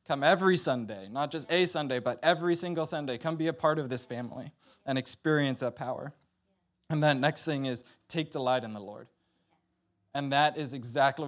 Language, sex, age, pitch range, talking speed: English, male, 20-39, 120-145 Hz, 190 wpm